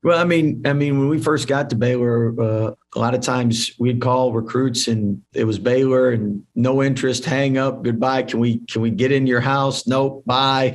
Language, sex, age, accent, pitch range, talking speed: English, male, 50-69, American, 110-120 Hz, 220 wpm